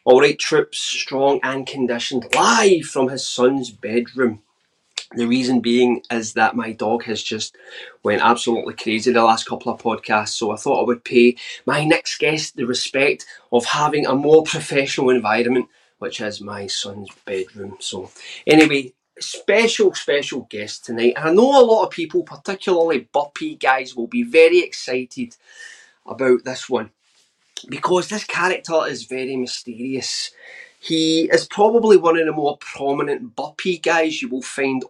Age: 20-39